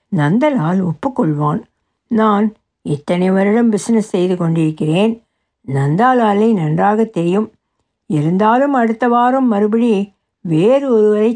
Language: Tamil